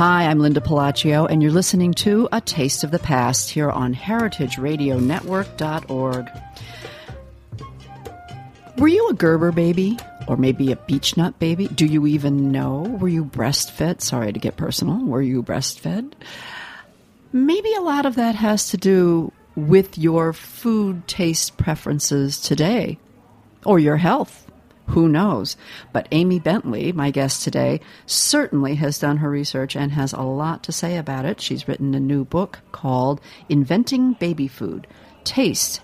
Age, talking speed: 50-69, 150 wpm